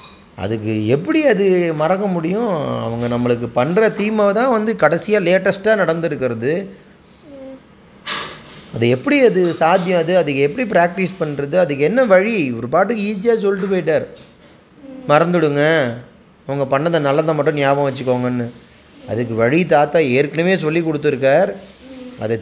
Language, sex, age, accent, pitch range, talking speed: Tamil, male, 30-49, native, 145-205 Hz, 120 wpm